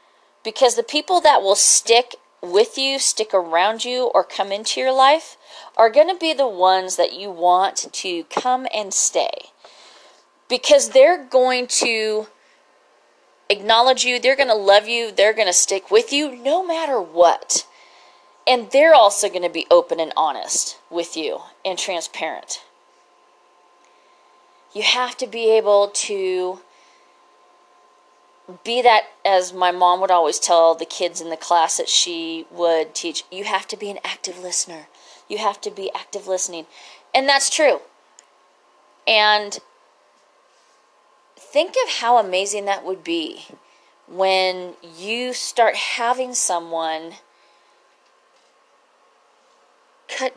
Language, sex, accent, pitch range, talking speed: English, female, American, 185-255 Hz, 135 wpm